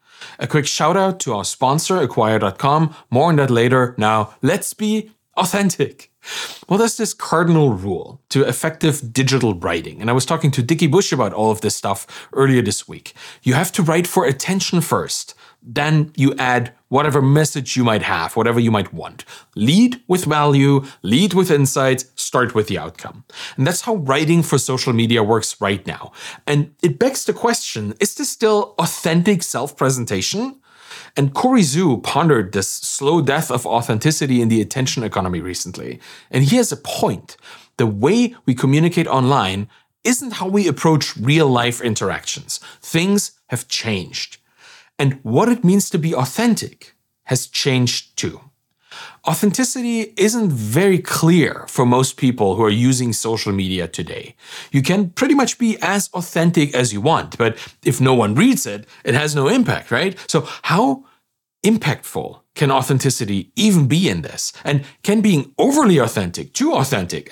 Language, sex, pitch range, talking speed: English, male, 120-185 Hz, 165 wpm